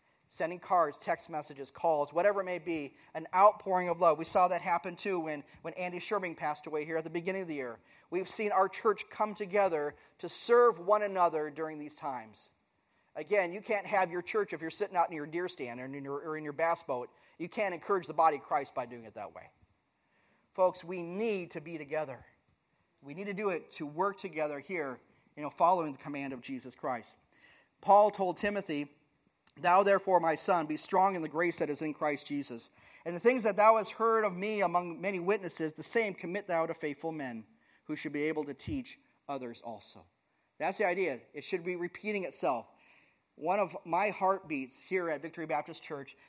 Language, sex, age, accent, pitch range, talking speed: English, male, 30-49, American, 155-195 Hz, 210 wpm